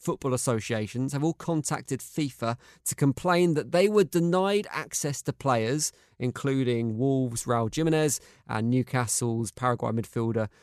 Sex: male